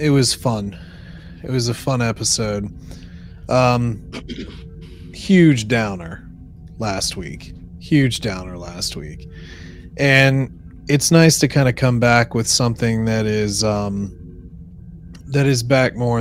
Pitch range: 95-120 Hz